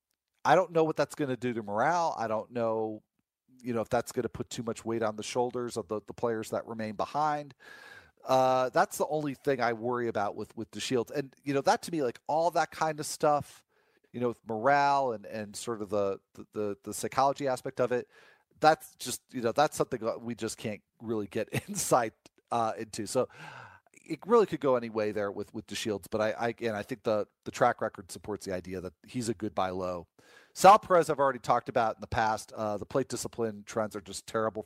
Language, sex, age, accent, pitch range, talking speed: English, male, 40-59, American, 110-140 Hz, 230 wpm